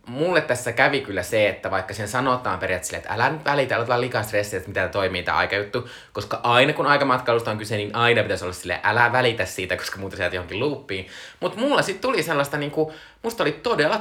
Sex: male